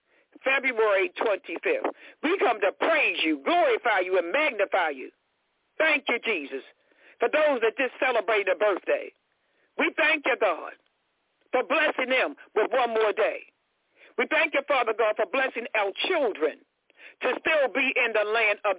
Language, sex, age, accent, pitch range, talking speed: English, male, 60-79, American, 220-305 Hz, 155 wpm